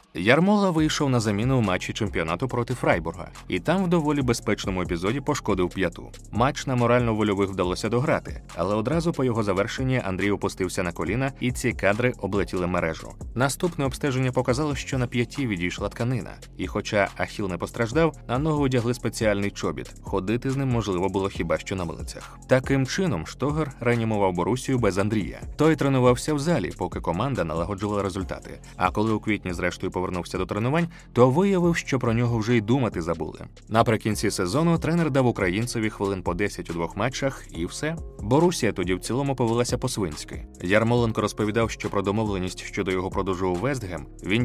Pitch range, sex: 95-130 Hz, male